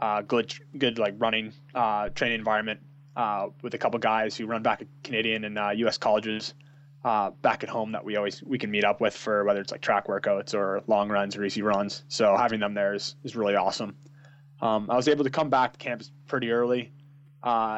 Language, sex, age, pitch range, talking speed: English, male, 20-39, 105-140 Hz, 225 wpm